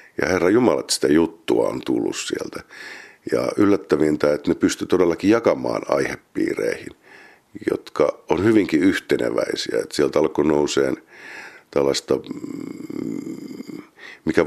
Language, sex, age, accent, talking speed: Finnish, male, 50-69, native, 110 wpm